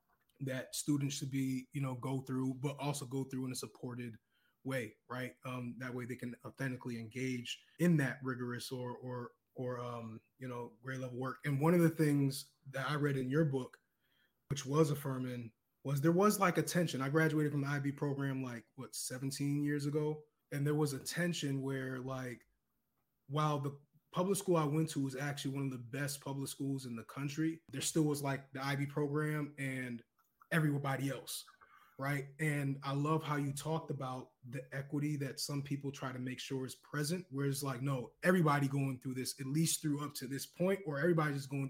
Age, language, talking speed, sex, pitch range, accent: 20-39, English, 200 wpm, male, 130-150 Hz, American